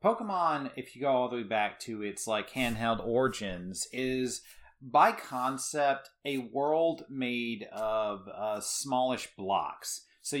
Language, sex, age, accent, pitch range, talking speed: English, male, 30-49, American, 110-130 Hz, 140 wpm